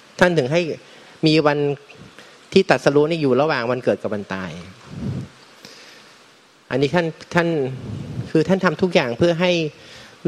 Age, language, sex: 30-49, Thai, male